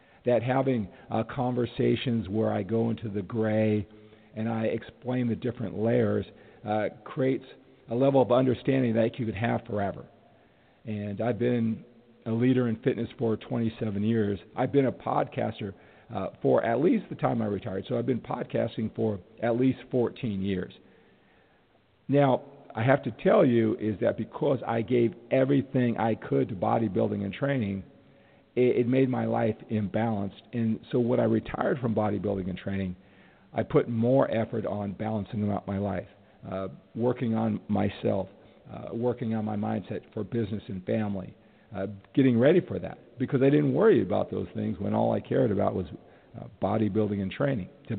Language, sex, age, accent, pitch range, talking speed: English, male, 50-69, American, 105-120 Hz, 170 wpm